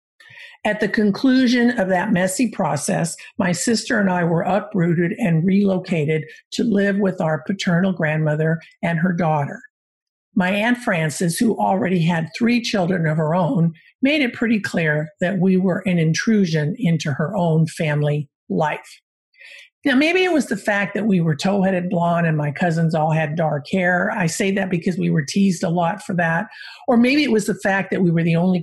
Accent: American